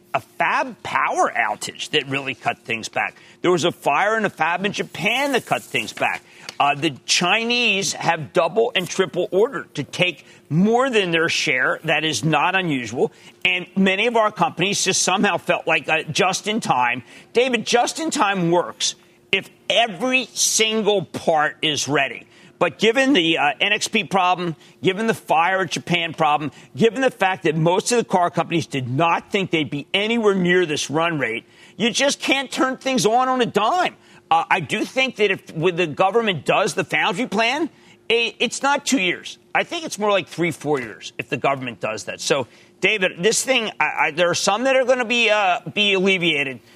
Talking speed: 195 wpm